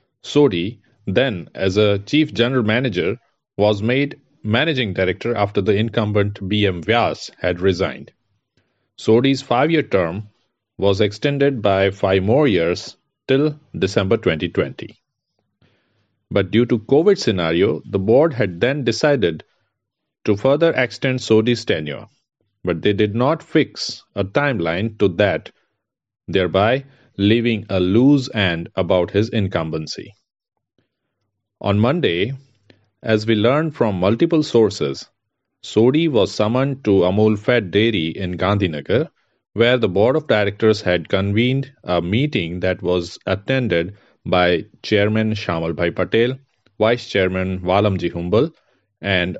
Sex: male